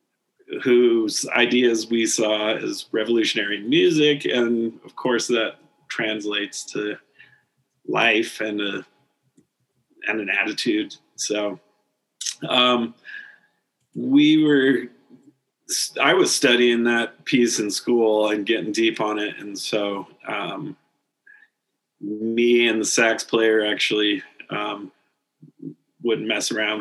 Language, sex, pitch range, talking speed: English, male, 110-125 Hz, 105 wpm